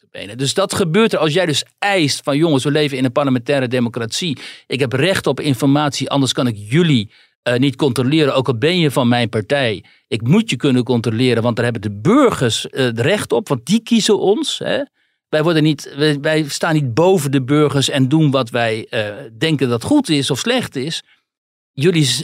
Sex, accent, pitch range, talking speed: male, Dutch, 135-185 Hz, 210 wpm